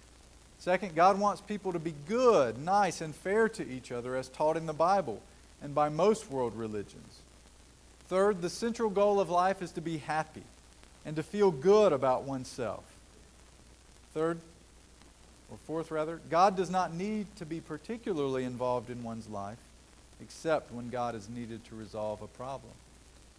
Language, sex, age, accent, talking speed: English, male, 50-69, American, 160 wpm